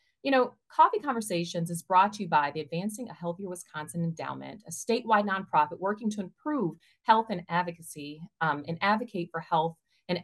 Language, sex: English, female